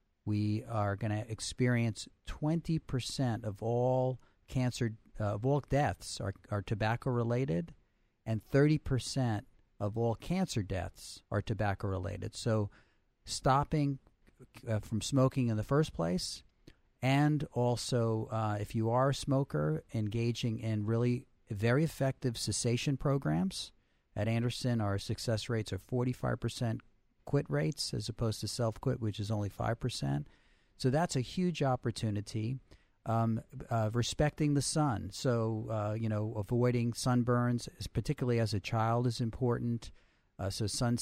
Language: English